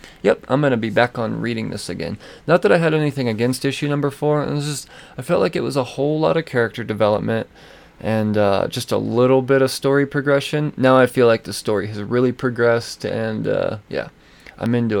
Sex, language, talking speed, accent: male, English, 225 wpm, American